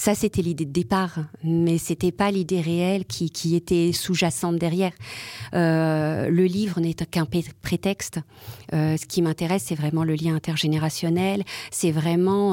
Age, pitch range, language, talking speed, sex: 40-59, 160-190 Hz, French, 160 wpm, female